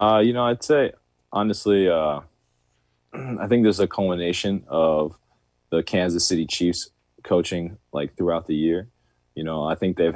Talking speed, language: 160 wpm, English